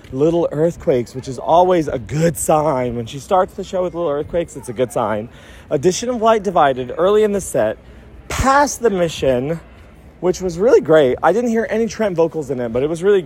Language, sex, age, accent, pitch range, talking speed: English, male, 30-49, American, 155-225 Hz, 215 wpm